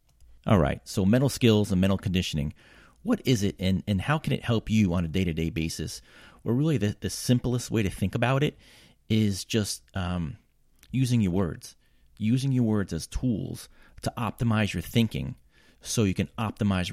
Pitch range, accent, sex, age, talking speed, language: 85-110 Hz, American, male, 30-49, 180 wpm, English